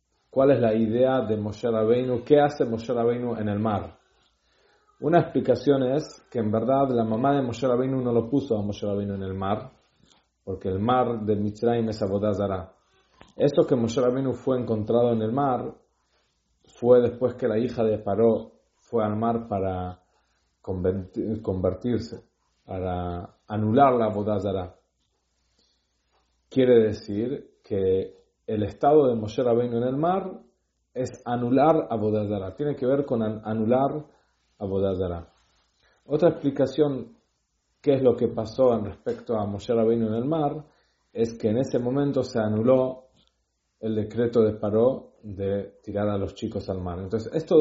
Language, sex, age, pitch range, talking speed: English, male, 40-59, 100-130 Hz, 155 wpm